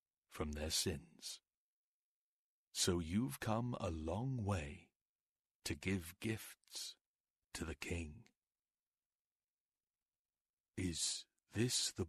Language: English